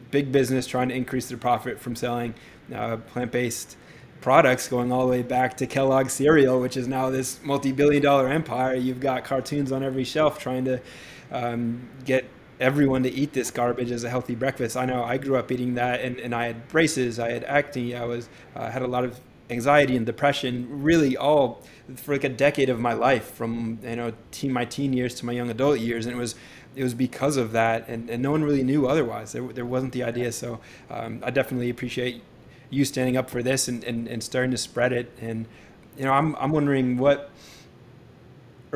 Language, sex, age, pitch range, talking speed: English, male, 20-39, 120-135 Hz, 210 wpm